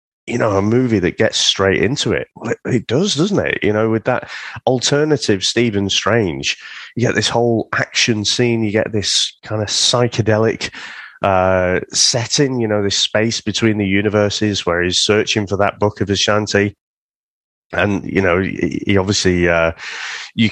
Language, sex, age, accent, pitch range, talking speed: English, male, 30-49, British, 85-110 Hz, 175 wpm